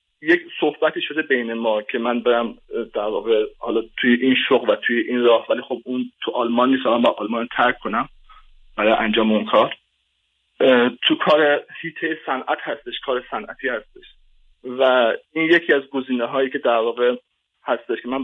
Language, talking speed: Persian, 170 wpm